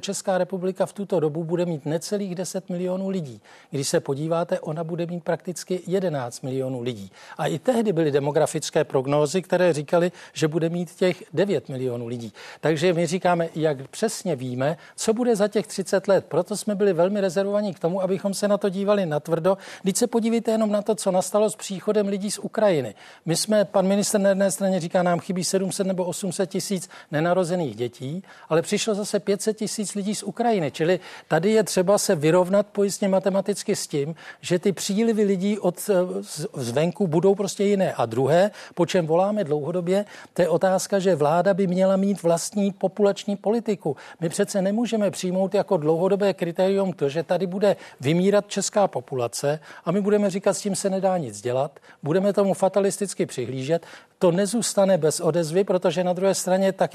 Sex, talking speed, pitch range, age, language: male, 180 wpm, 170-200 Hz, 40-59, Czech